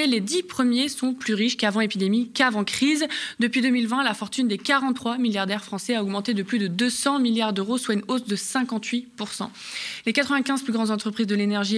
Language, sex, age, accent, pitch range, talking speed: French, female, 20-39, French, 210-255 Hz, 195 wpm